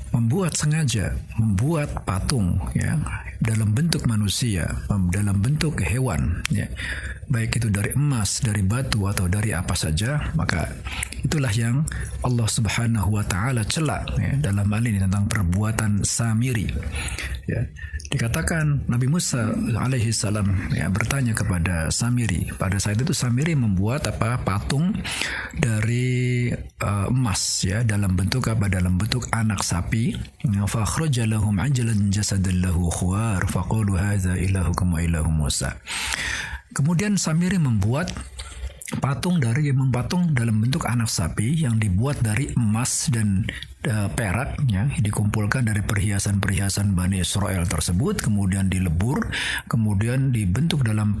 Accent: native